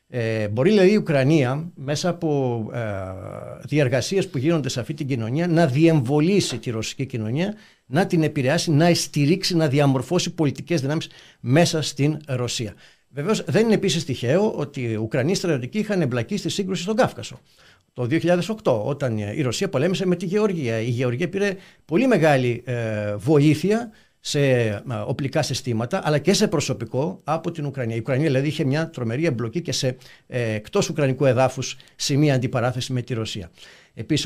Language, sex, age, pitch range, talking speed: Greek, male, 50-69, 125-170 Hz, 160 wpm